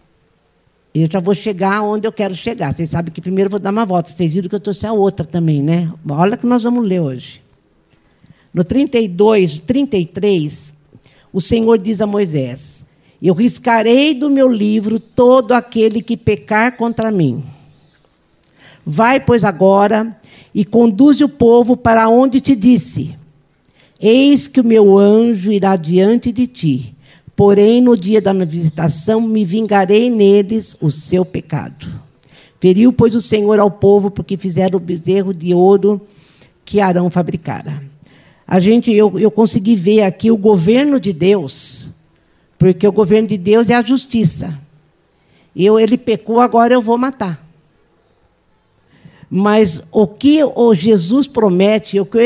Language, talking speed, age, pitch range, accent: Portuguese, 150 wpm, 50-69, 170-225 Hz, Brazilian